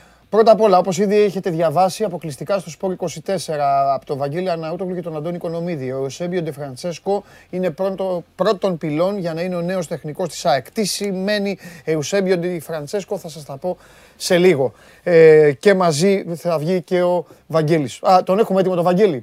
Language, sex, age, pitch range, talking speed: Greek, male, 30-49, 160-200 Hz, 180 wpm